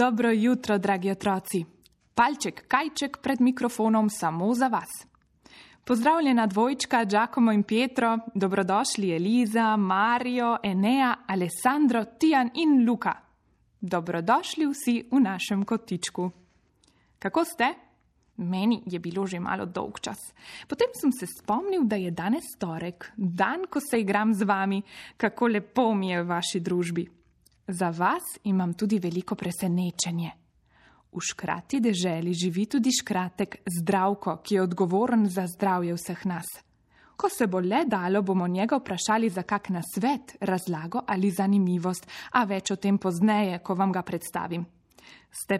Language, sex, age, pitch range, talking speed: Italian, female, 20-39, 185-240 Hz, 130 wpm